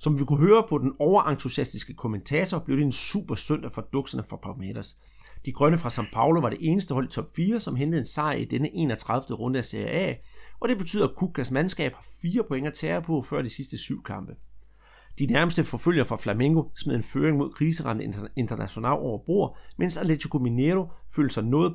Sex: male